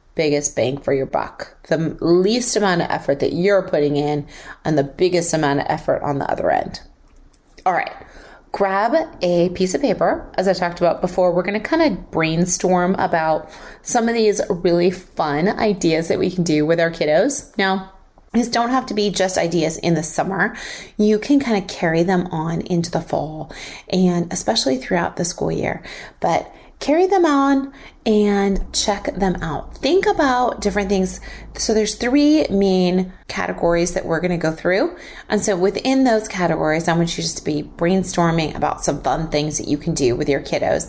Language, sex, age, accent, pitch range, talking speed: English, female, 30-49, American, 165-205 Hz, 190 wpm